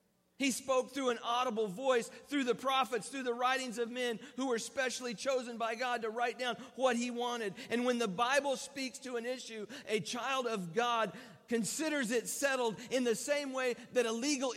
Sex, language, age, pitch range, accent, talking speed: male, English, 40-59, 155-240 Hz, American, 200 wpm